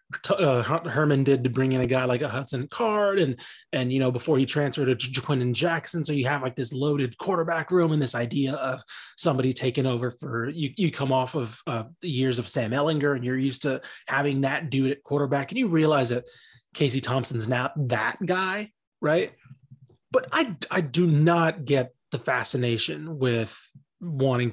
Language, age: English, 20-39